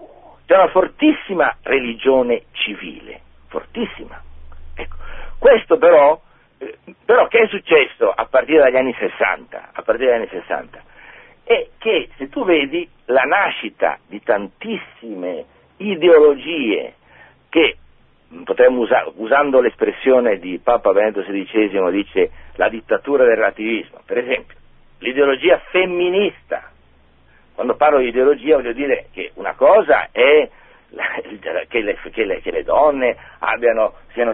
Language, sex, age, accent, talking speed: Italian, male, 60-79, native, 115 wpm